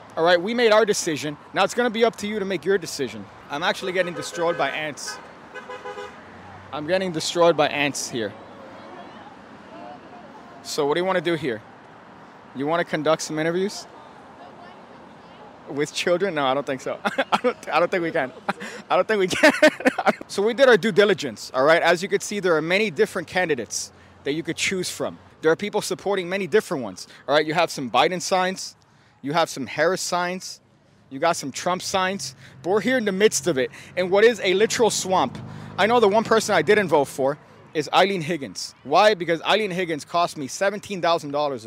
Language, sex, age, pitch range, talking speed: English, male, 30-49, 145-195 Hz, 200 wpm